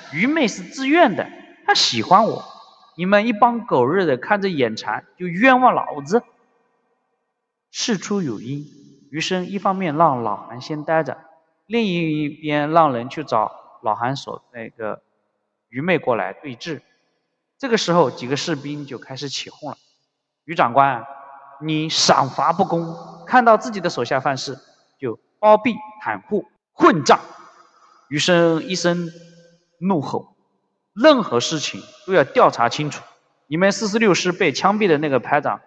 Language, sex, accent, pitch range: Chinese, male, native, 140-205 Hz